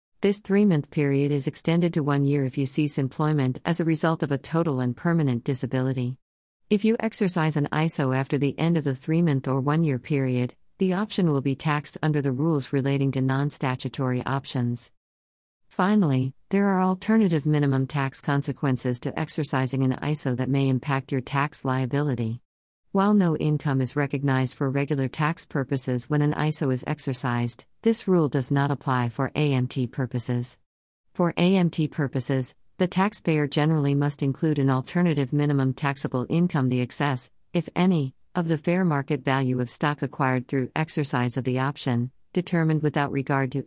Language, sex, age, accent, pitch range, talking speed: English, female, 50-69, American, 130-155 Hz, 165 wpm